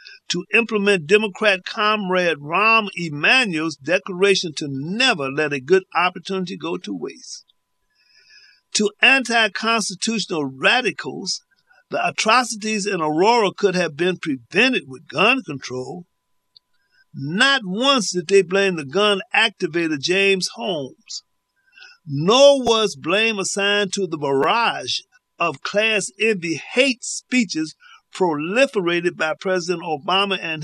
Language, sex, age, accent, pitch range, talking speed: English, male, 50-69, American, 175-225 Hz, 110 wpm